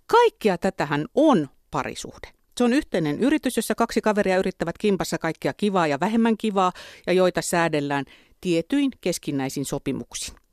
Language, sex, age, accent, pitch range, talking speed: Finnish, female, 50-69, native, 150-205 Hz, 135 wpm